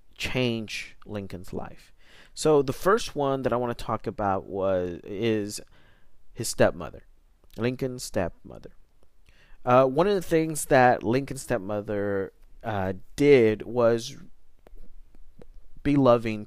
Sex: male